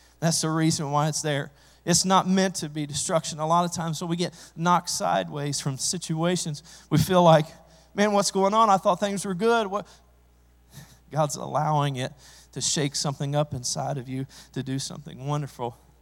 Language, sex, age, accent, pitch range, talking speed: English, male, 40-59, American, 130-160 Hz, 185 wpm